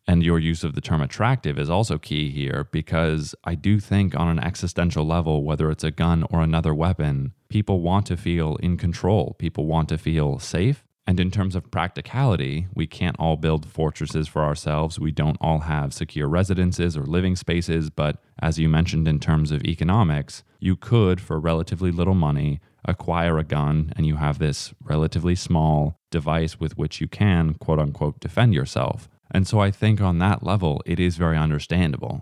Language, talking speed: English, 190 wpm